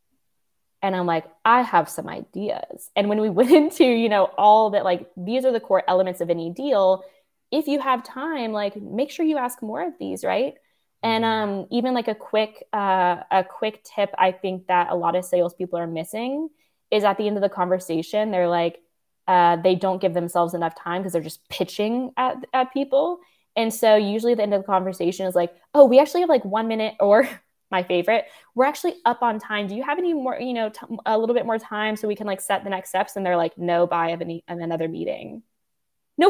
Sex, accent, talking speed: female, American, 225 wpm